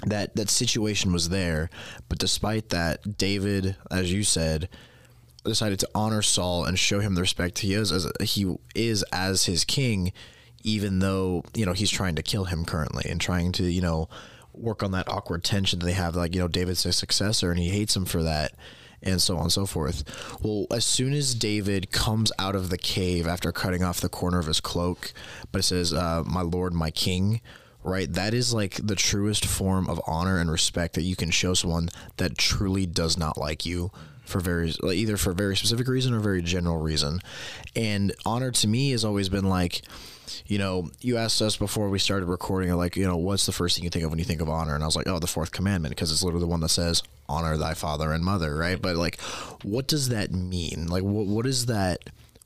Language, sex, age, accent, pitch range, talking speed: English, male, 20-39, American, 85-105 Hz, 225 wpm